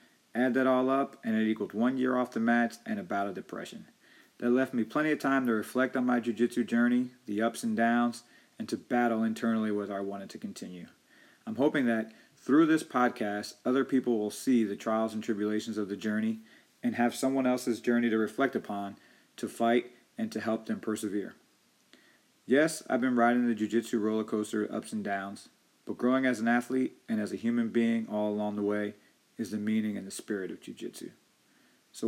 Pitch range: 110-130 Hz